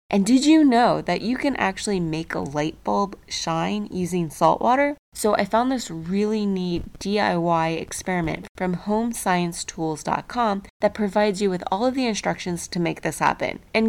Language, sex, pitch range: English, female, 170-225 Hz